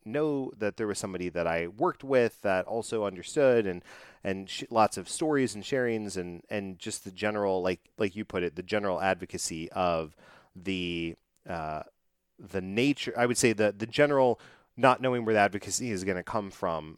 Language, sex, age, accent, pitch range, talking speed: English, male, 30-49, American, 90-110 Hz, 185 wpm